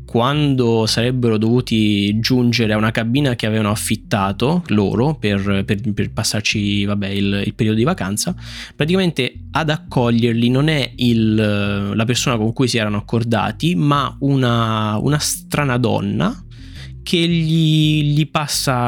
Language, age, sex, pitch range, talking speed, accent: Italian, 10-29, male, 110-140 Hz, 135 wpm, native